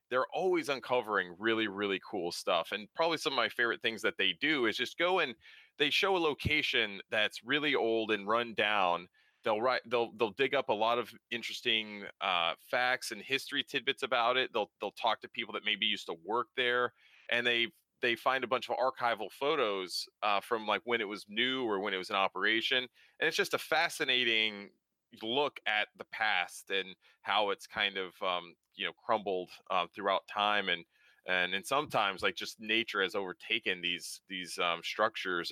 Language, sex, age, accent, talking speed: English, male, 30-49, American, 195 wpm